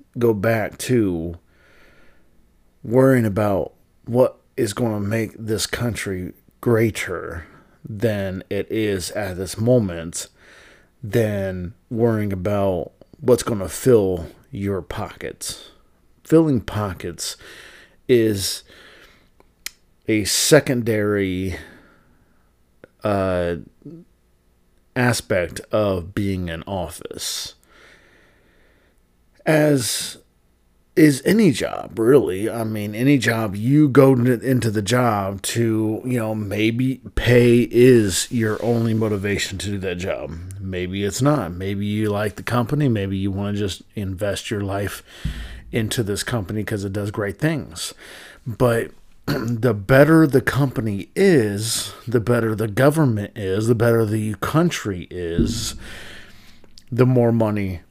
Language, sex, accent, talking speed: English, male, American, 115 wpm